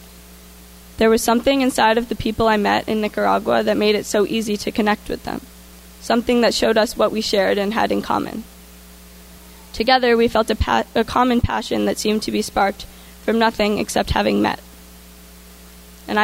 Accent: American